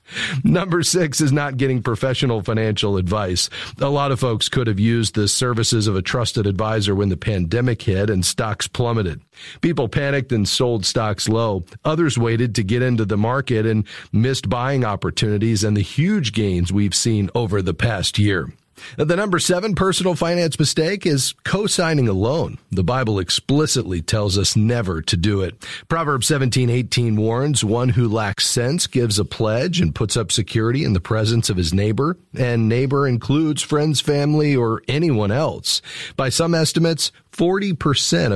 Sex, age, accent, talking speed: male, 40-59, American, 165 wpm